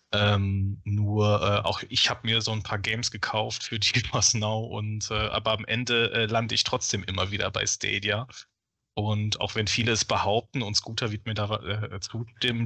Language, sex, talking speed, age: German, male, 195 wpm, 20-39